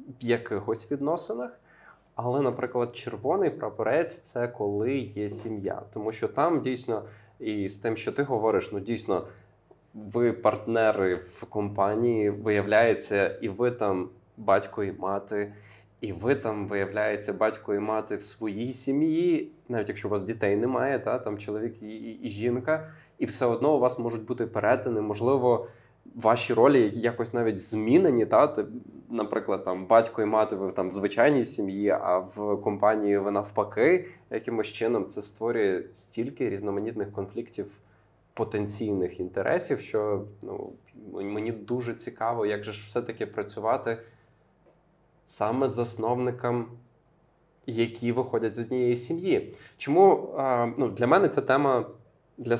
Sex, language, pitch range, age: male, Ukrainian, 105-125 Hz, 20-39